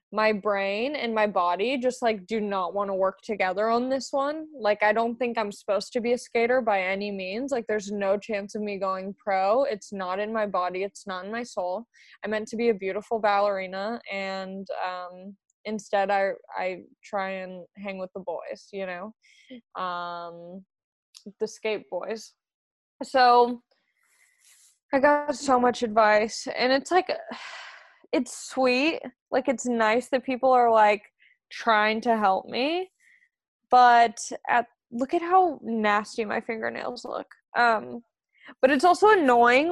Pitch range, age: 210-275 Hz, 20-39